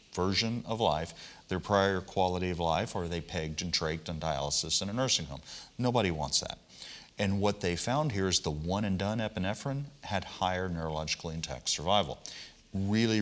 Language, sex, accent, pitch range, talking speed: English, male, American, 85-105 Hz, 180 wpm